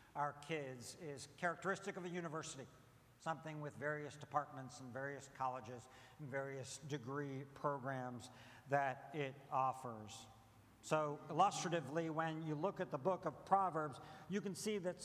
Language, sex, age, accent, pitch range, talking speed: English, male, 60-79, American, 145-200 Hz, 140 wpm